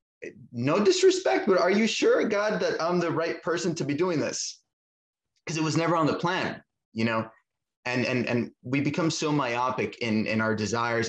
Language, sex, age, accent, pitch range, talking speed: English, male, 20-39, American, 110-125 Hz, 195 wpm